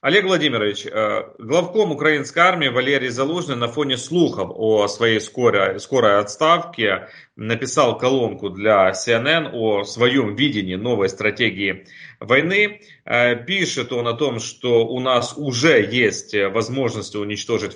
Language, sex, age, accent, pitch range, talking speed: Russian, male, 30-49, native, 110-150 Hz, 120 wpm